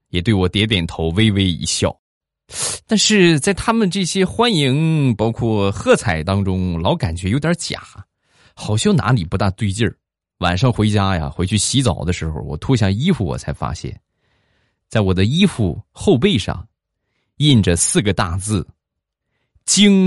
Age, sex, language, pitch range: 20-39, male, Chinese, 85-120 Hz